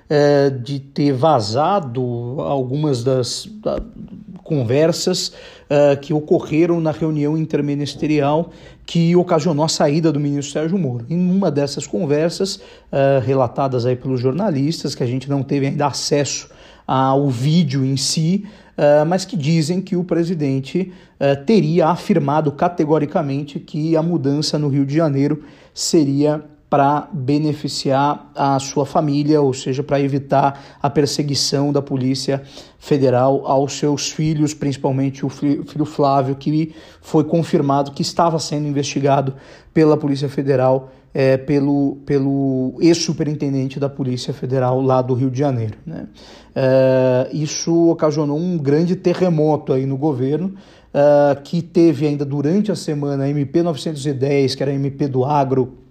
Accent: Brazilian